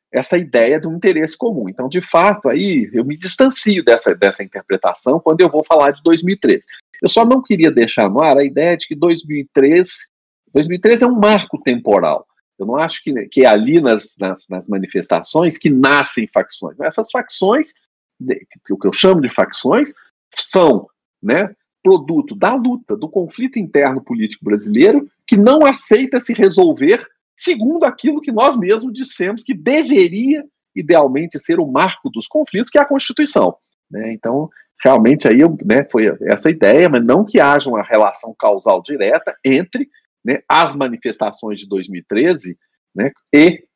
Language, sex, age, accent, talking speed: Portuguese, male, 40-59, Brazilian, 155 wpm